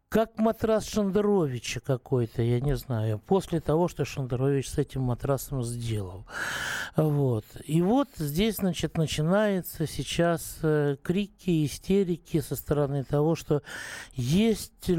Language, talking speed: Russian, 120 wpm